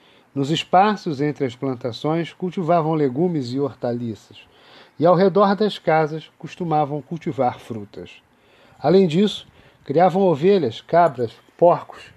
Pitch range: 135-180 Hz